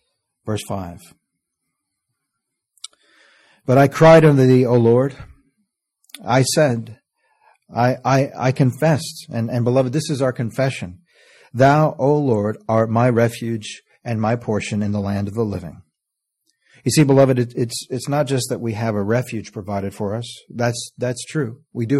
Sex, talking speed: male, 160 wpm